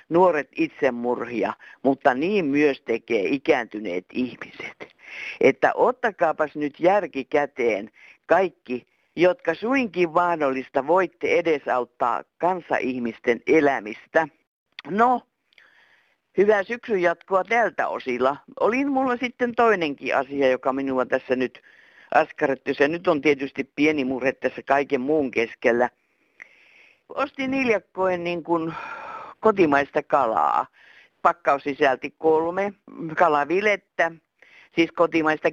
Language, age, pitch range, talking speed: Finnish, 50-69, 150-220 Hz, 100 wpm